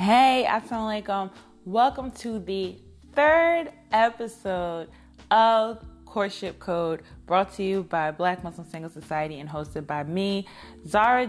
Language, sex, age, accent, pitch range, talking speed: English, female, 20-39, American, 170-215 Hz, 135 wpm